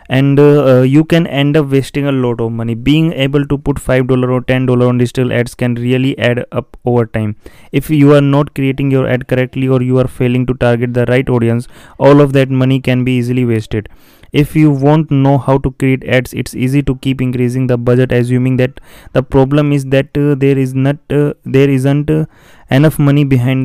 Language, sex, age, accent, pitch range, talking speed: English, male, 20-39, Indian, 125-140 Hz, 220 wpm